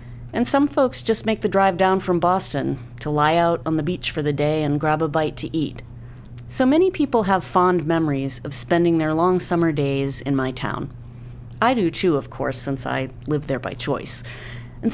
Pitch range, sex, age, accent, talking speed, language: 135-180 Hz, female, 40-59, American, 210 wpm, English